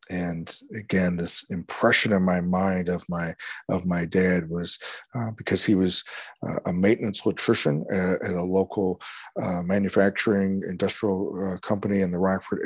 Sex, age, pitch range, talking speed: male, 40-59, 90-100 Hz, 155 wpm